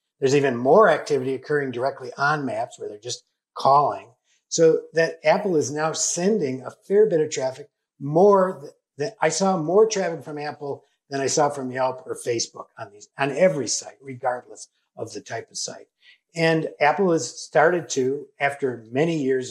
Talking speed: 180 wpm